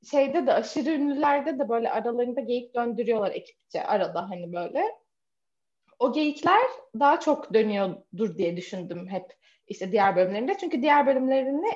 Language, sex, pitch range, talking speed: Turkish, female, 205-295 Hz, 140 wpm